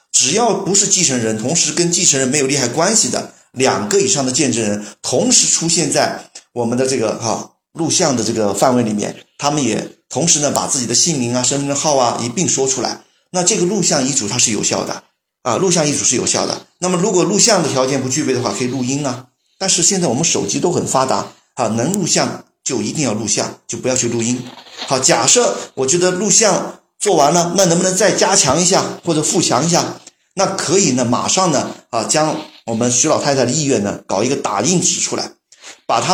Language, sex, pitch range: Chinese, male, 125-180 Hz